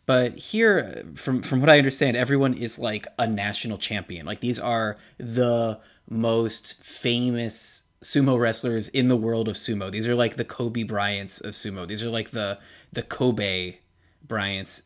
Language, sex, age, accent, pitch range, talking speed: English, male, 20-39, American, 110-130 Hz, 165 wpm